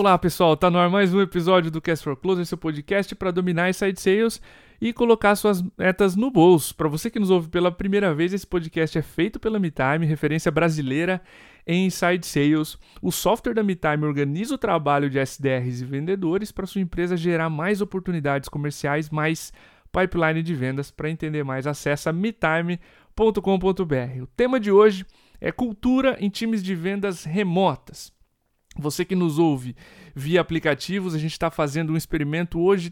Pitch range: 155-195 Hz